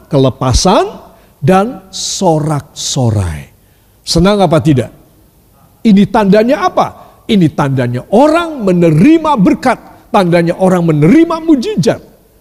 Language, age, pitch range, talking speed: Indonesian, 50-69, 145-230 Hz, 90 wpm